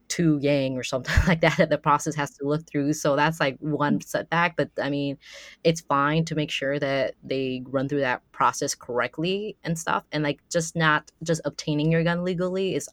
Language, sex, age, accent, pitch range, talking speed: English, female, 20-39, American, 135-155 Hz, 210 wpm